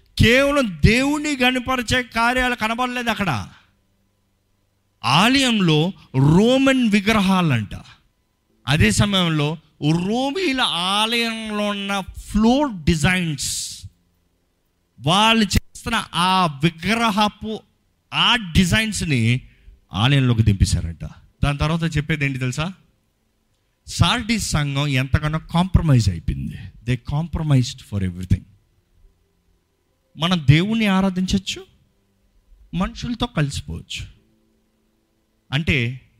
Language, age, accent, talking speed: Telugu, 50-69, native, 75 wpm